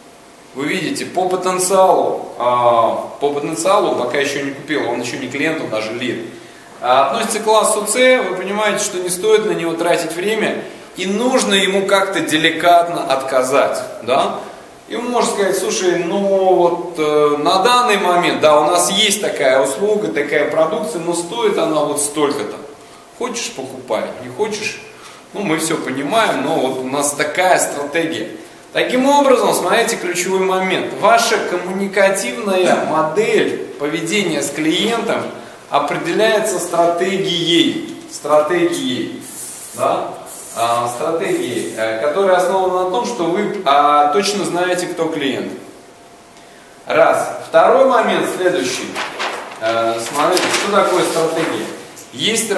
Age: 20-39